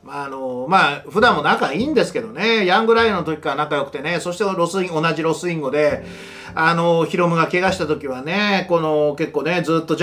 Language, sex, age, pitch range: Japanese, male, 40-59, 155-230 Hz